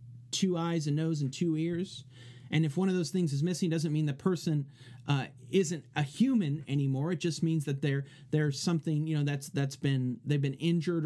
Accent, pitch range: American, 135-180 Hz